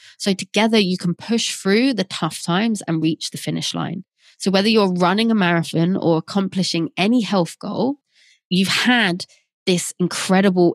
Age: 20-39